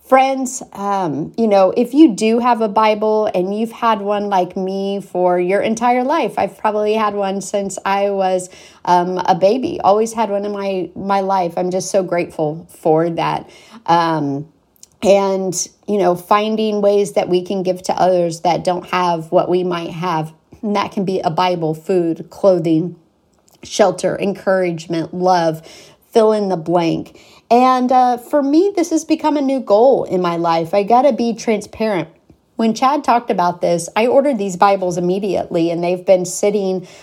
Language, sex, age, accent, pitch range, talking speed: English, female, 40-59, American, 180-225 Hz, 175 wpm